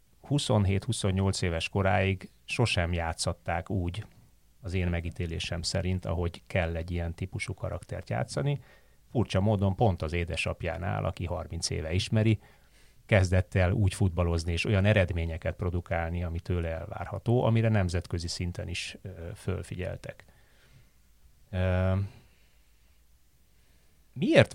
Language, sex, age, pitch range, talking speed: Hungarian, male, 30-49, 85-105 Hz, 105 wpm